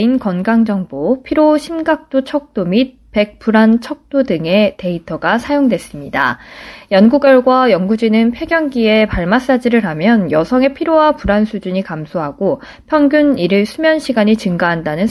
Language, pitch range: Korean, 185-260 Hz